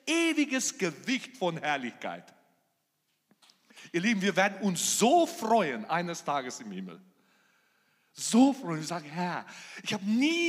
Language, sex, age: German, male, 40-59